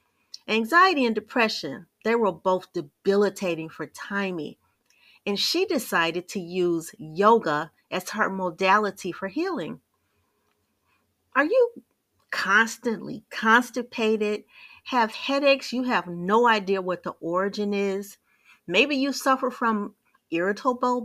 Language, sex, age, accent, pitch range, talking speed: English, female, 40-59, American, 180-240 Hz, 110 wpm